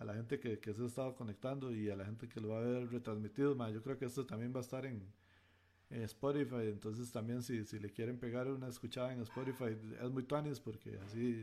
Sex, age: male, 40-59